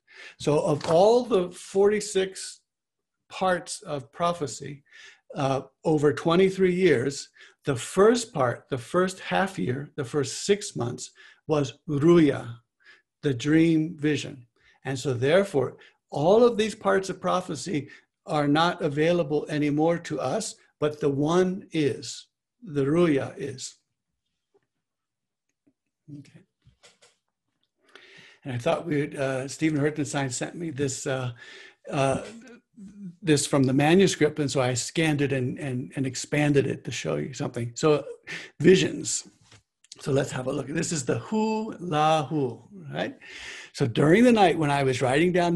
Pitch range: 135-180 Hz